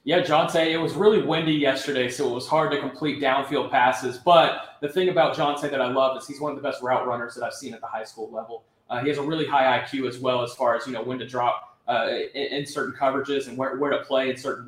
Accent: American